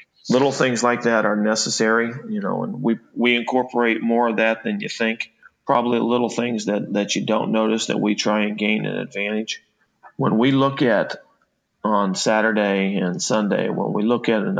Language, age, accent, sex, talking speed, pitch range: English, 40-59, American, male, 190 wpm, 100-115 Hz